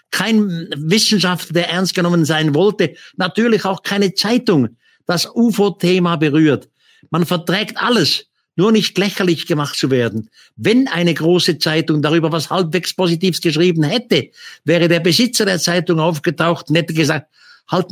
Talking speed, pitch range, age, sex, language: 145 wpm, 150-200 Hz, 50-69, male, German